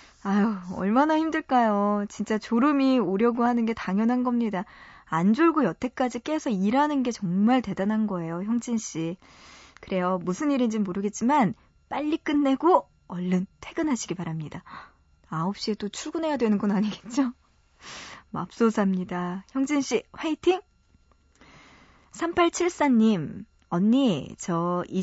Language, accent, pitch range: Korean, native, 185-255 Hz